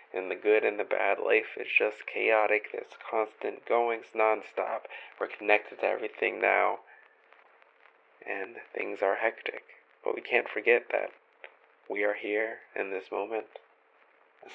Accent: American